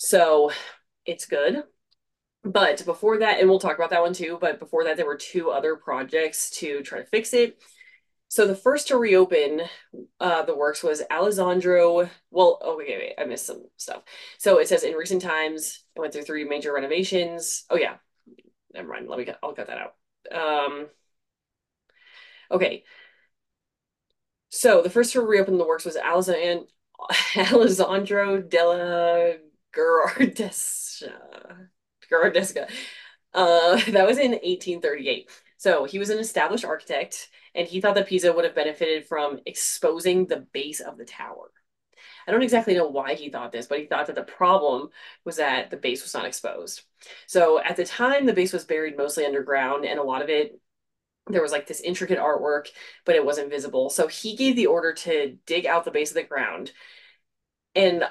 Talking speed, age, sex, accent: 170 wpm, 20-39, female, American